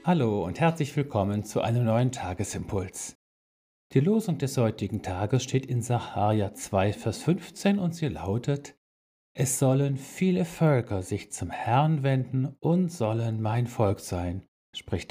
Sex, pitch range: male, 105-155 Hz